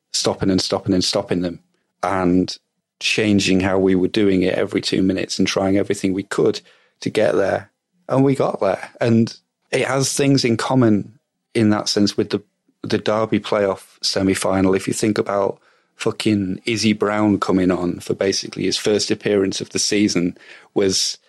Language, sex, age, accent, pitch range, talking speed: English, male, 30-49, British, 95-115 Hz, 170 wpm